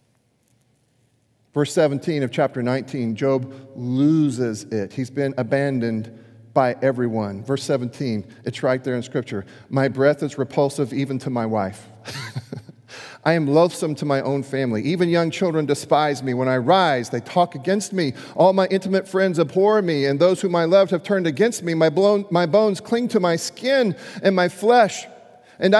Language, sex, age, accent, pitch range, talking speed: English, male, 40-59, American, 140-225 Hz, 170 wpm